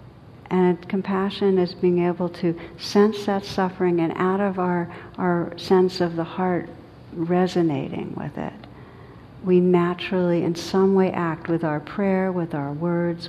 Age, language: 60-79, English